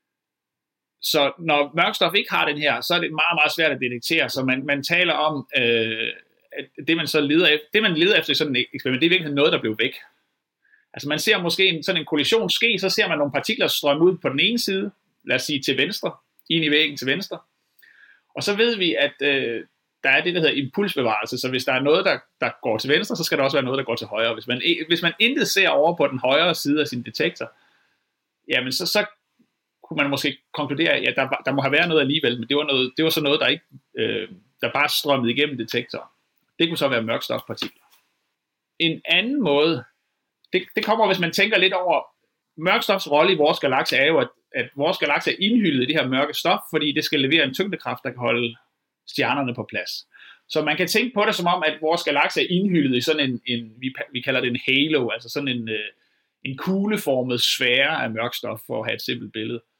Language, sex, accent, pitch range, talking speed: Danish, male, native, 135-180 Hz, 235 wpm